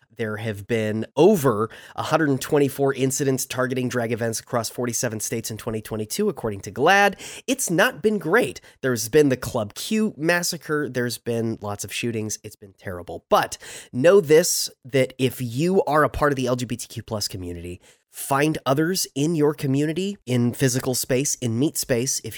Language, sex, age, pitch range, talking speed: English, male, 30-49, 110-140 Hz, 165 wpm